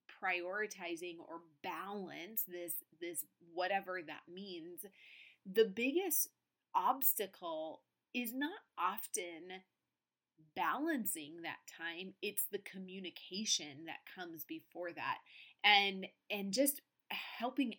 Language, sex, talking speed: English, female, 95 wpm